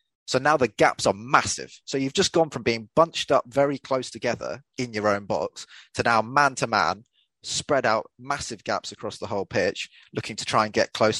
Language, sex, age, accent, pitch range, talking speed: English, male, 20-39, British, 110-135 Hz, 215 wpm